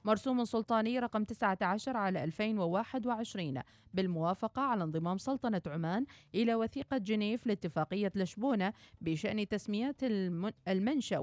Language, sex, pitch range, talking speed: Arabic, female, 185-230 Hz, 100 wpm